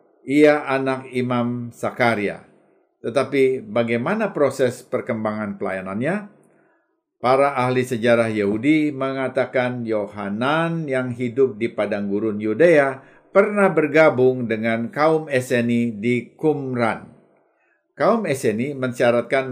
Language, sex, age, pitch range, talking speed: Indonesian, male, 50-69, 115-145 Hz, 95 wpm